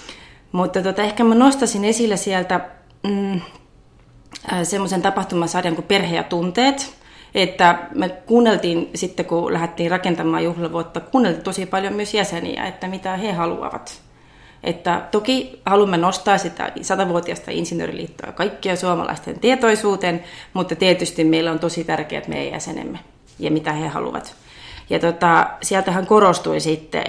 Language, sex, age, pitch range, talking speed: Finnish, female, 30-49, 170-195 Hz, 130 wpm